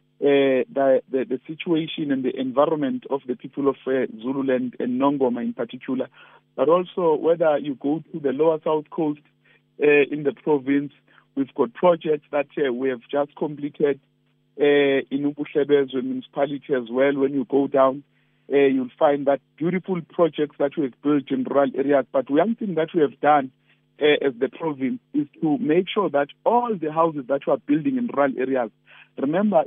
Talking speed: 190 wpm